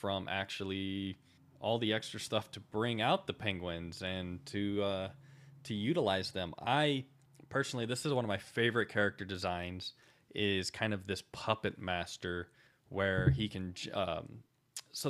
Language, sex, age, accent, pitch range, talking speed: English, male, 20-39, American, 95-125 Hz, 150 wpm